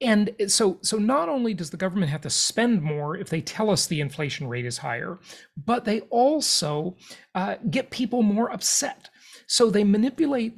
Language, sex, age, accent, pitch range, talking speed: English, male, 40-59, American, 165-220 Hz, 180 wpm